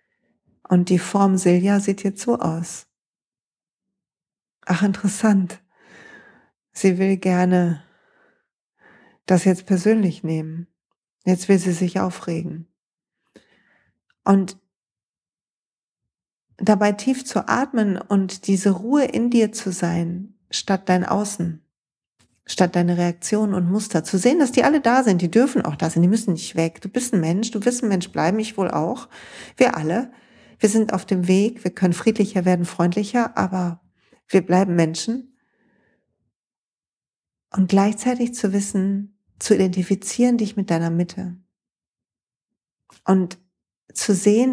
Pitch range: 180-215 Hz